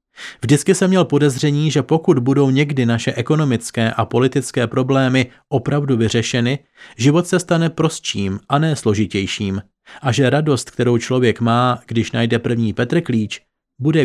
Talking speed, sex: 140 wpm, male